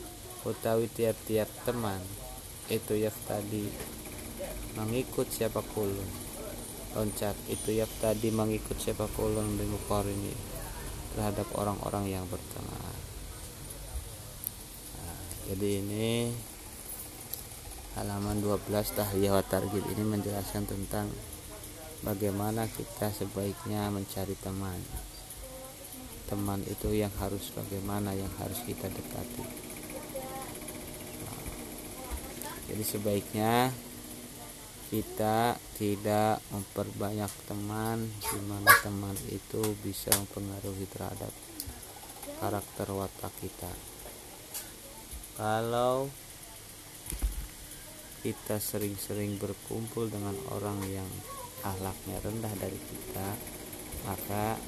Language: Indonesian